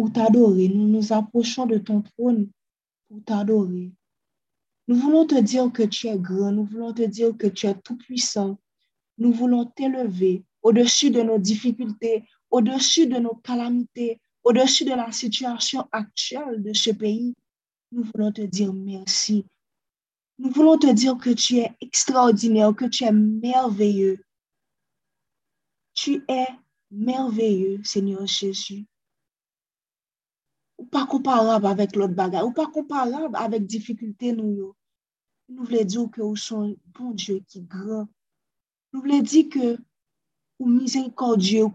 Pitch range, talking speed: 210-255 Hz, 140 wpm